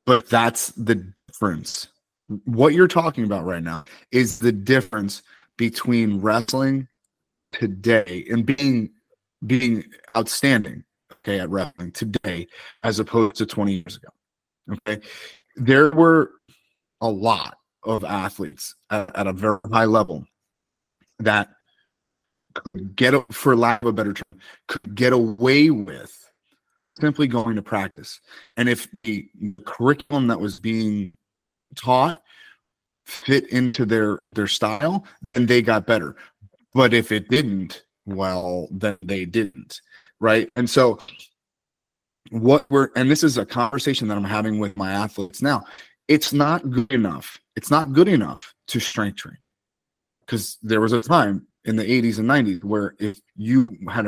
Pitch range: 100-130 Hz